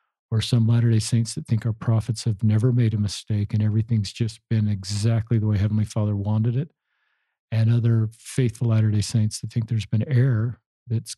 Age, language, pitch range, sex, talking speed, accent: 50-69, English, 110-125 Hz, male, 190 wpm, American